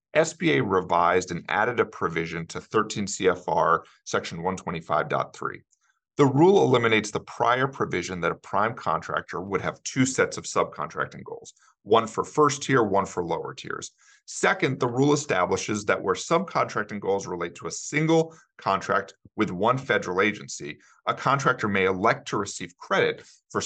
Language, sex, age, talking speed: English, male, 40-59, 155 wpm